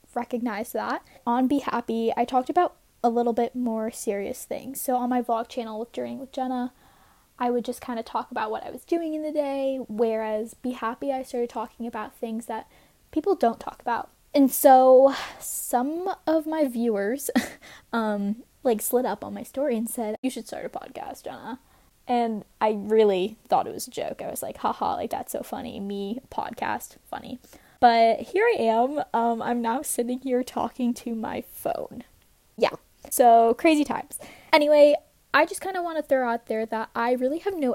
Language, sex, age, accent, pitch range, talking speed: English, female, 10-29, American, 225-270 Hz, 195 wpm